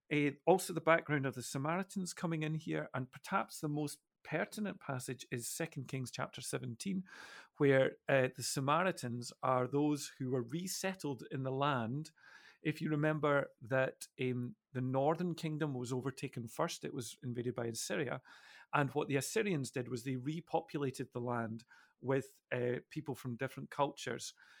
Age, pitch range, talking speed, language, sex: 40-59, 125-155 Hz, 160 wpm, English, male